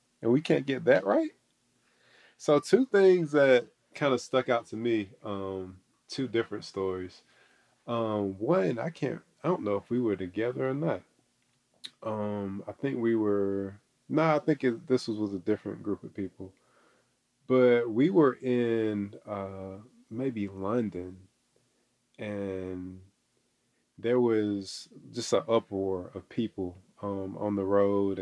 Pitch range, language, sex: 95-120 Hz, English, male